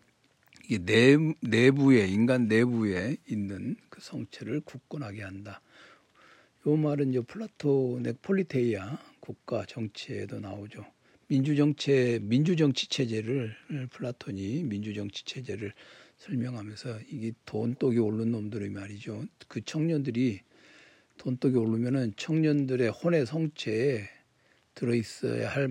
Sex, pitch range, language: male, 110-140 Hz, Korean